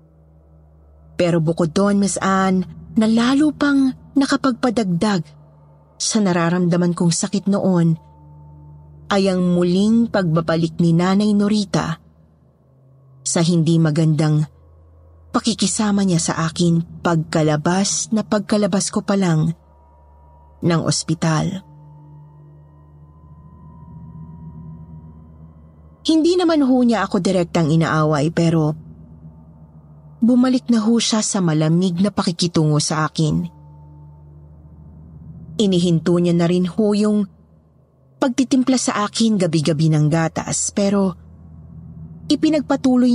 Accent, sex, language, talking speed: native, female, Filipino, 90 wpm